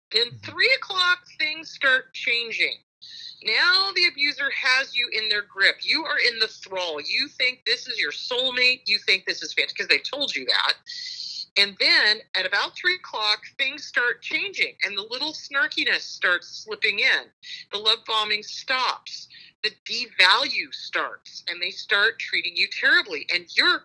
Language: English